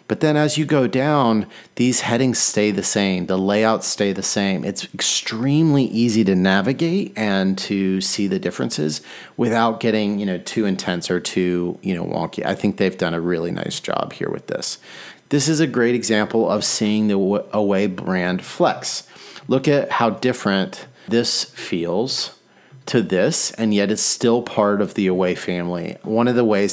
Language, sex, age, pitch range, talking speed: English, male, 30-49, 95-115 Hz, 180 wpm